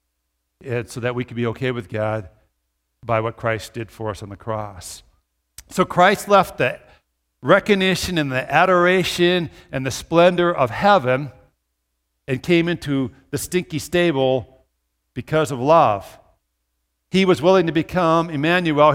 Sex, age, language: male, 60-79, English